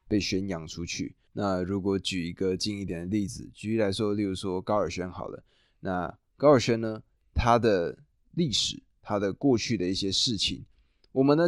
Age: 20-39